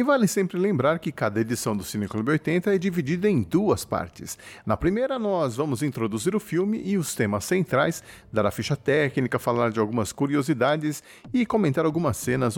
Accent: Brazilian